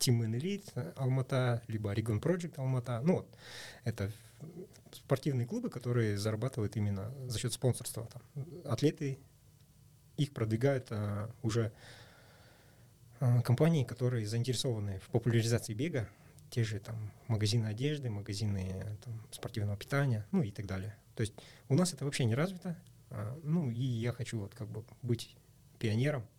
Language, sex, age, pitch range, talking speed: Russian, male, 20-39, 110-130 Hz, 140 wpm